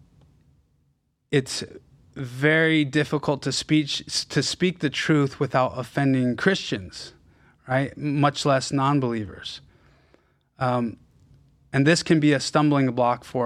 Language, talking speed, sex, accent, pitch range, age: English, 105 wpm, male, American, 130-155 Hz, 30-49